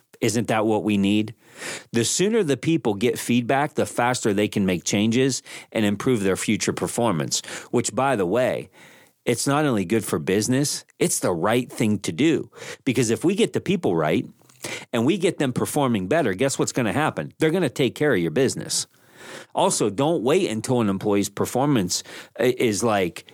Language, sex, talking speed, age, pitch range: English, male, 190 wpm, 40-59, 105-135 Hz